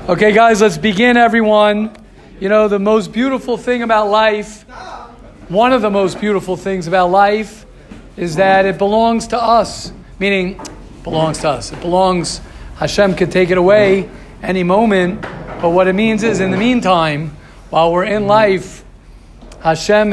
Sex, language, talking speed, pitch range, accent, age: male, English, 160 wpm, 180-220 Hz, American, 40-59